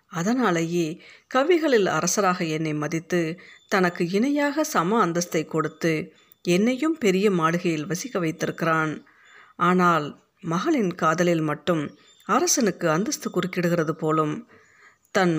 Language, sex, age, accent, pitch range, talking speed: Tamil, female, 50-69, native, 160-210 Hz, 95 wpm